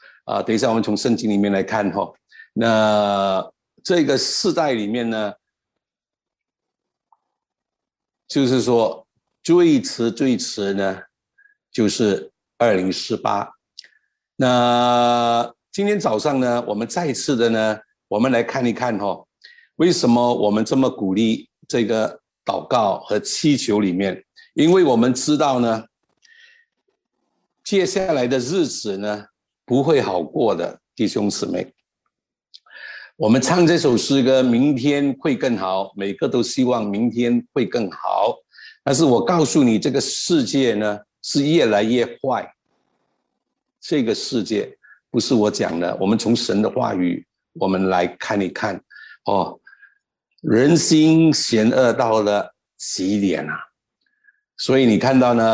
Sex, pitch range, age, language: male, 105-150 Hz, 60-79, Chinese